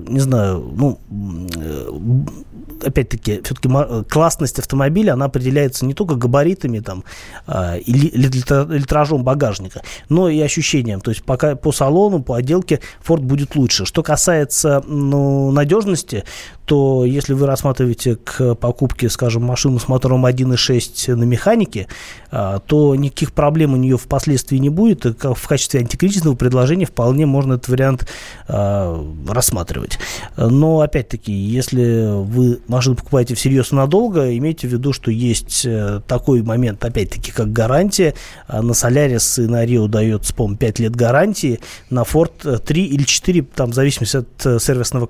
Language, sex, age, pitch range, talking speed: Russian, male, 20-39, 115-145 Hz, 140 wpm